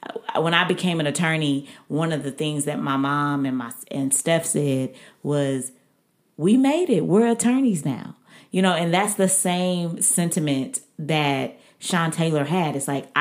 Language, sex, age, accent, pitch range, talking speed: English, female, 30-49, American, 145-185 Hz, 170 wpm